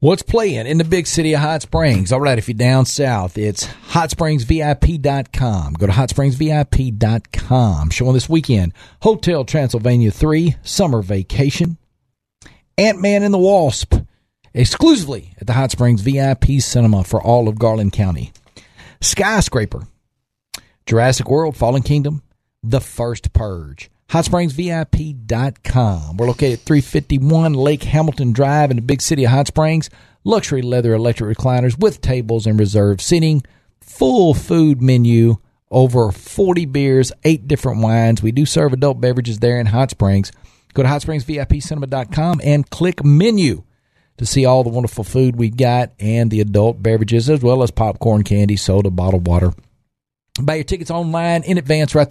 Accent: American